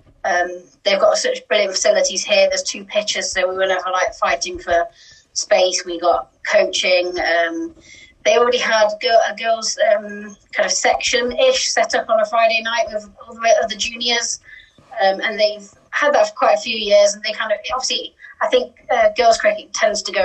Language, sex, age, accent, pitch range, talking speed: English, female, 30-49, British, 195-260 Hz, 195 wpm